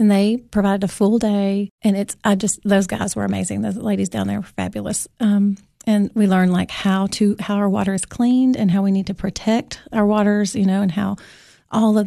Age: 40-59